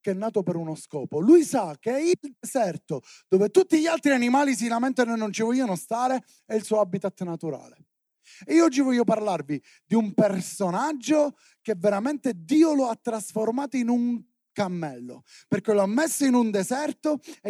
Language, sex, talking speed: Italian, male, 185 wpm